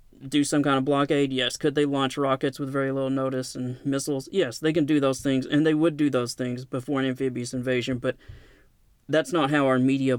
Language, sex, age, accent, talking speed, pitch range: English, male, 30-49, American, 225 wpm, 125-150 Hz